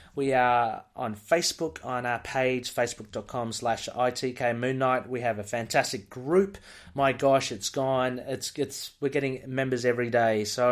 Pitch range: 115-140 Hz